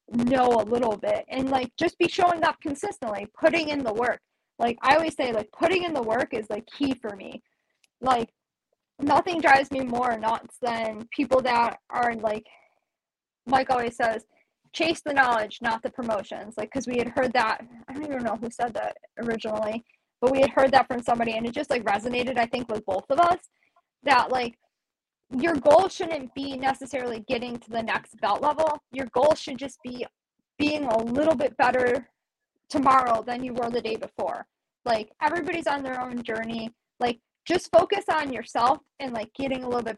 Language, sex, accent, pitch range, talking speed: English, female, American, 235-295 Hz, 190 wpm